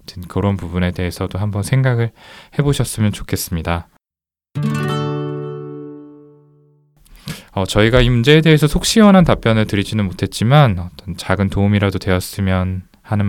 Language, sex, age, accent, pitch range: Korean, male, 20-39, native, 90-125 Hz